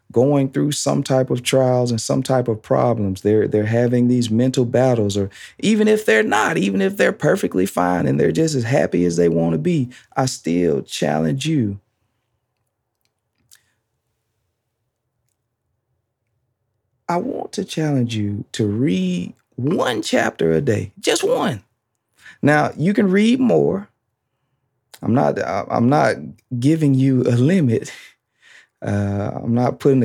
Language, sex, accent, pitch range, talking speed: English, male, American, 110-135 Hz, 140 wpm